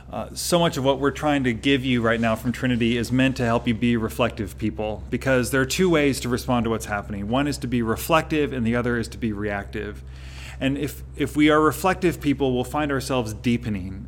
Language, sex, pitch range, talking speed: English, male, 115-140 Hz, 235 wpm